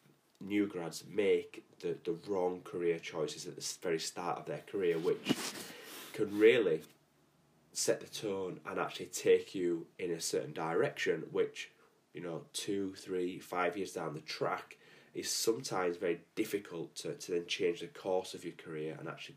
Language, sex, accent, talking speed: English, male, British, 165 wpm